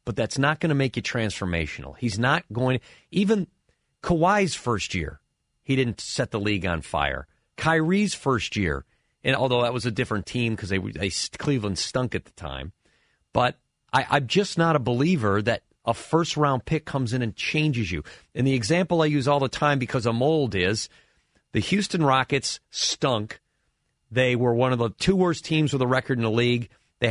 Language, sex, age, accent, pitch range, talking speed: English, male, 40-59, American, 115-150 Hz, 195 wpm